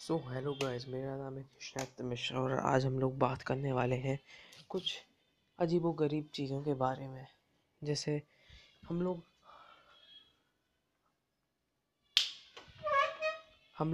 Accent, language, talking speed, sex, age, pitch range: native, Hindi, 110 wpm, female, 20-39, 135-165 Hz